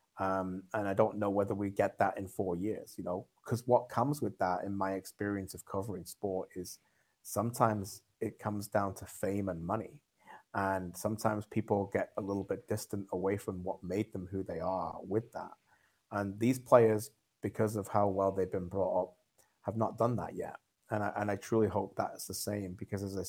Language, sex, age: English, male, 30-49